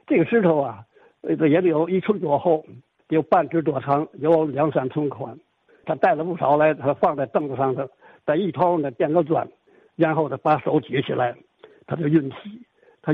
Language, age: Chinese, 60-79